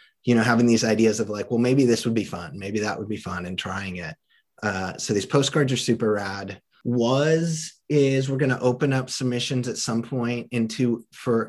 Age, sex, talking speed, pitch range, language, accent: 30-49, male, 215 wpm, 100-120 Hz, English, American